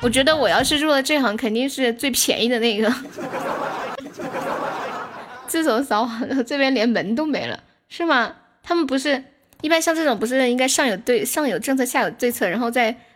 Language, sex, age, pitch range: Chinese, female, 10-29, 225-290 Hz